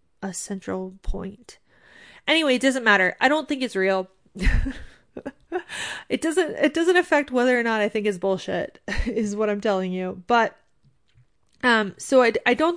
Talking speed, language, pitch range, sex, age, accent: 165 wpm, English, 195-245 Hz, female, 30-49, American